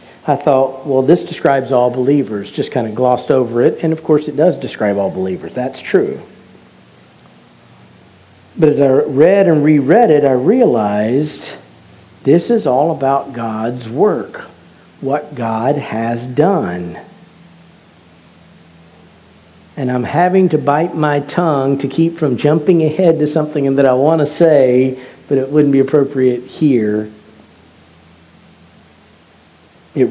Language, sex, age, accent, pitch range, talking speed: English, male, 50-69, American, 130-160 Hz, 135 wpm